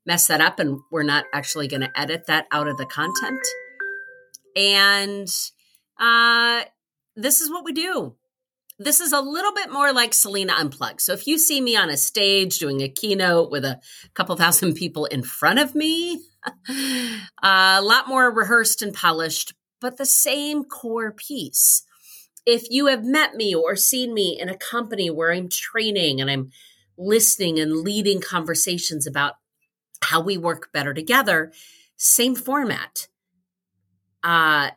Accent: American